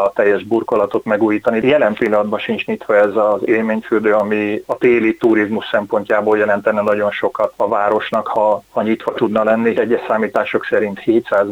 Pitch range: 105-115 Hz